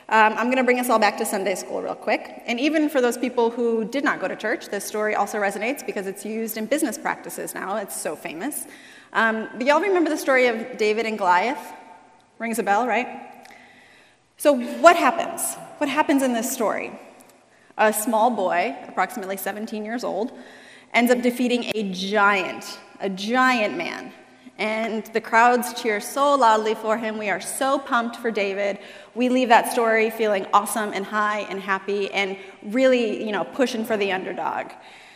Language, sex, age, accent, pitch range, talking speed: English, female, 30-49, American, 215-260 Hz, 185 wpm